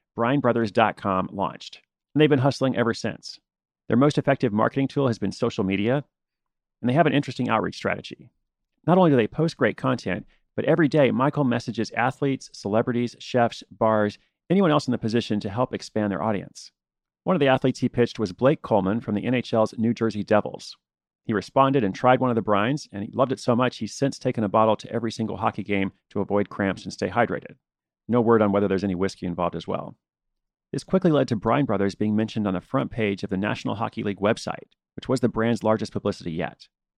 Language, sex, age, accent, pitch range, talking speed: English, male, 40-59, American, 105-130 Hz, 210 wpm